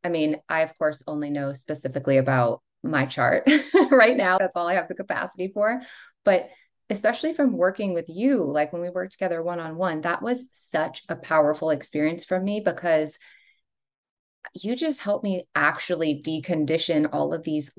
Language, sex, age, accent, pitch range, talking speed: English, female, 20-39, American, 165-220 Hz, 170 wpm